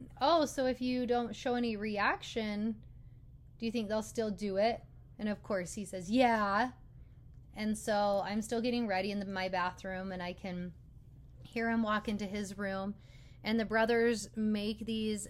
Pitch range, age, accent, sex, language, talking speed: 190-225 Hz, 20-39, American, female, English, 175 wpm